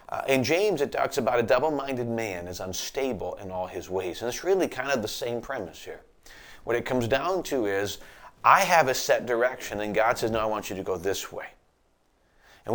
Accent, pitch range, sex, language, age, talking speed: American, 105-130 Hz, male, English, 40-59, 220 wpm